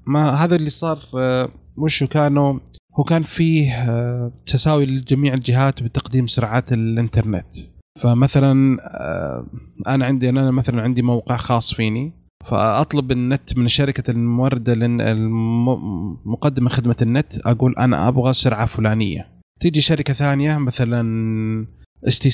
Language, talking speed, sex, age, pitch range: Arabic, 115 wpm, male, 30-49, 120-150 Hz